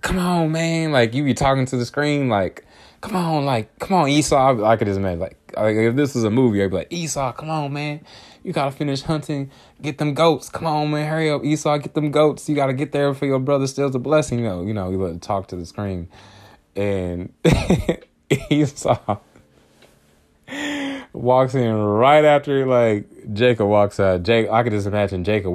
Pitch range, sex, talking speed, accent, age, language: 95-130 Hz, male, 205 wpm, American, 20-39, English